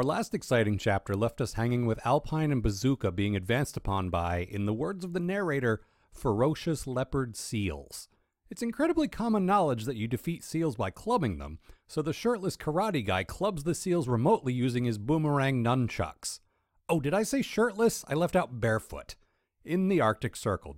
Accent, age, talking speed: American, 40-59, 175 wpm